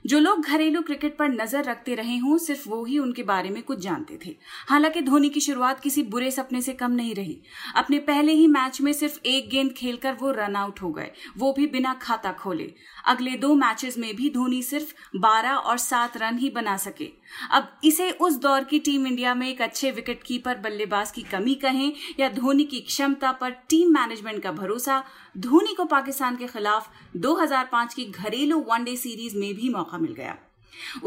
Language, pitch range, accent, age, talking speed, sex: Hindi, 230-295 Hz, native, 30-49, 195 wpm, female